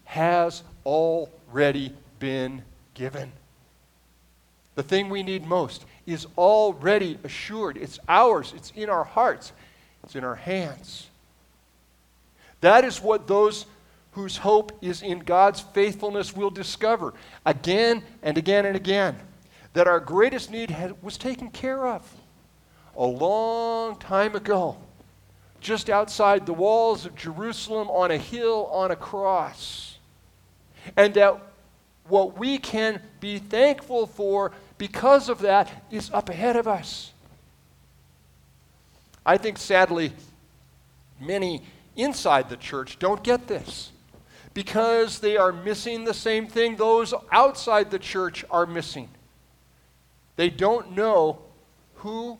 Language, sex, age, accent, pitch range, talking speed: English, male, 50-69, American, 145-210 Hz, 120 wpm